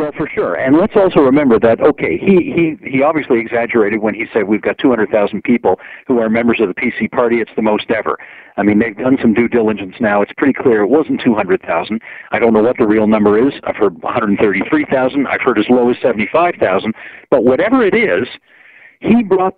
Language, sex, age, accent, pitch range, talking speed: English, male, 50-69, American, 115-160 Hz, 210 wpm